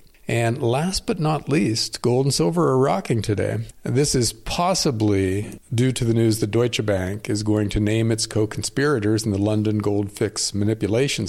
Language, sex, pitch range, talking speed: English, male, 105-130 Hz, 175 wpm